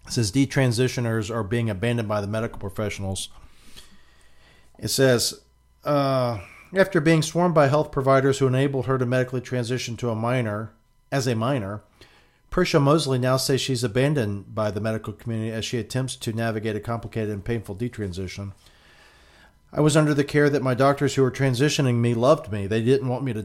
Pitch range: 110-130 Hz